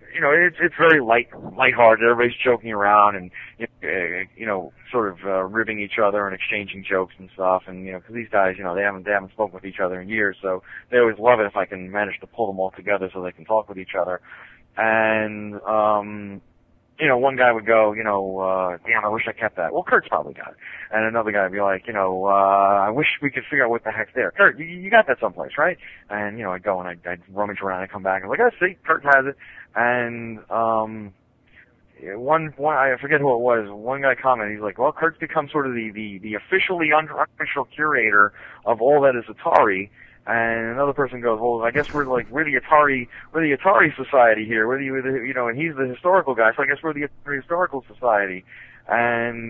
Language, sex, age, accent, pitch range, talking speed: English, male, 20-39, American, 105-135 Hz, 240 wpm